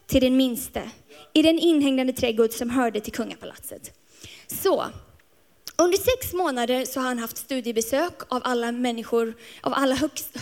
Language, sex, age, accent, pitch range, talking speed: Swedish, female, 20-39, native, 245-310 Hz, 150 wpm